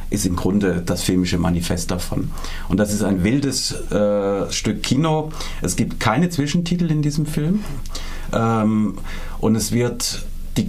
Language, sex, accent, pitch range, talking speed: German, male, German, 100-125 Hz, 150 wpm